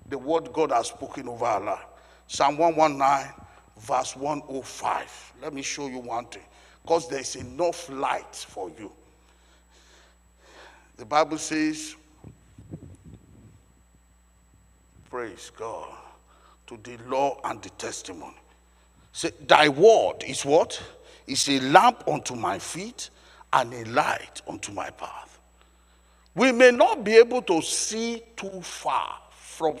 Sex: male